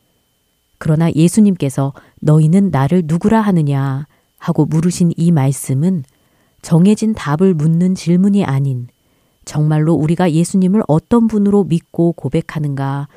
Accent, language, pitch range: native, Korean, 140-185 Hz